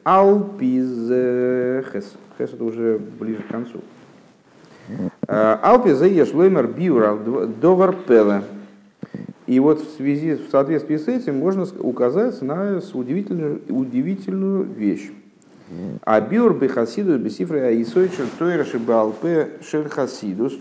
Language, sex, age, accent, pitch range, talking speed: Russian, male, 50-69, native, 105-150 Hz, 100 wpm